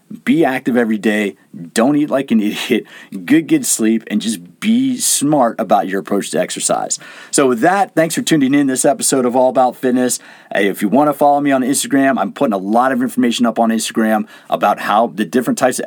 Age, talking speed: 40-59, 215 wpm